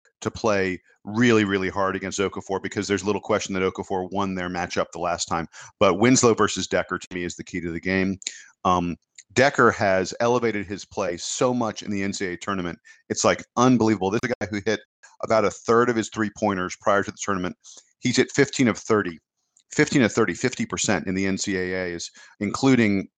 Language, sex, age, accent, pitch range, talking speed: English, male, 40-59, American, 95-115 Hz, 195 wpm